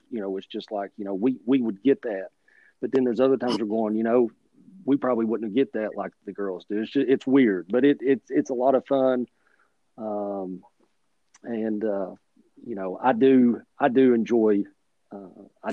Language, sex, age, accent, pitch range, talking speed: English, male, 40-59, American, 110-135 Hz, 205 wpm